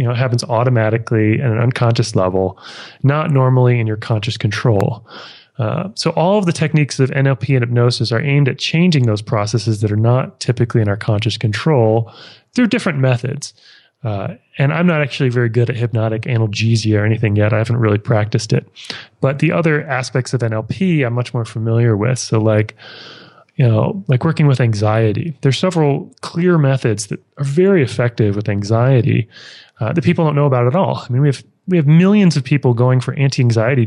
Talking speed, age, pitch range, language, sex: 195 wpm, 30-49, 115-140 Hz, English, male